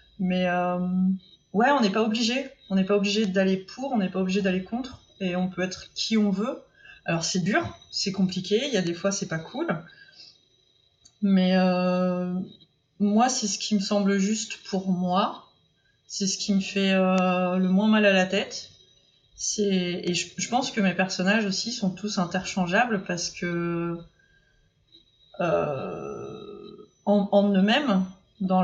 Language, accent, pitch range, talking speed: French, French, 180-210 Hz, 170 wpm